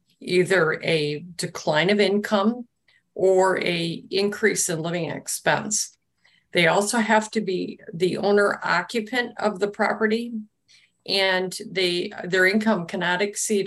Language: English